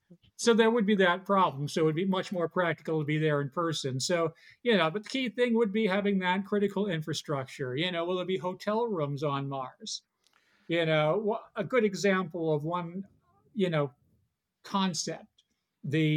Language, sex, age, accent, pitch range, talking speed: English, male, 50-69, American, 150-195 Hz, 190 wpm